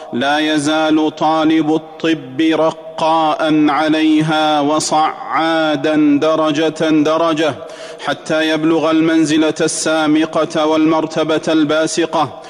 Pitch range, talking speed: 155-165 Hz, 70 wpm